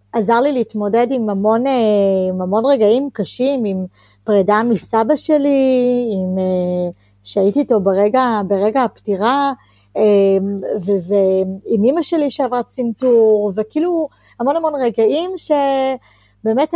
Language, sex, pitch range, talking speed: Hebrew, female, 200-255 Hz, 100 wpm